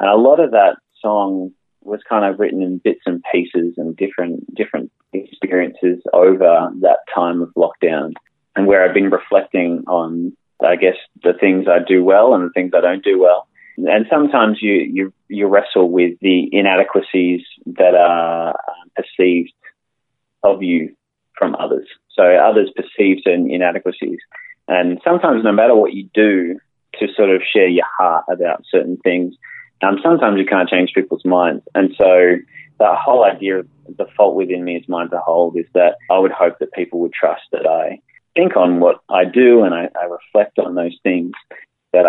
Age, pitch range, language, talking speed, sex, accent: 30-49, 90-95 Hz, English, 180 wpm, male, Australian